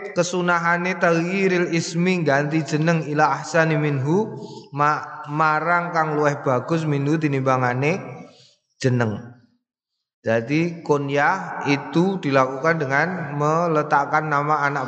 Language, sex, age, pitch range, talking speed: Indonesian, male, 20-39, 150-180 Hz, 95 wpm